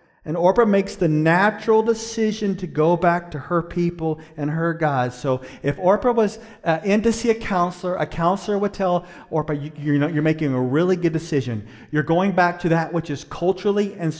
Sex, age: male, 40-59